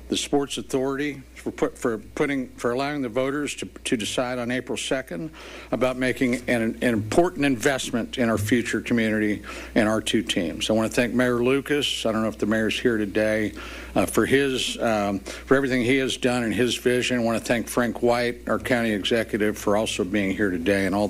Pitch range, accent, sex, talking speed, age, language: 110-135 Hz, American, male, 210 wpm, 60-79, English